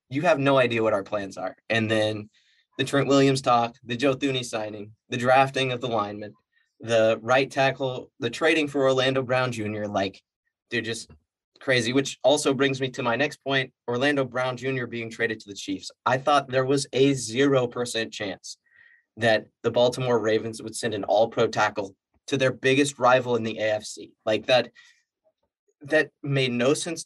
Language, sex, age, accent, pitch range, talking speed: English, male, 20-39, American, 120-145 Hz, 180 wpm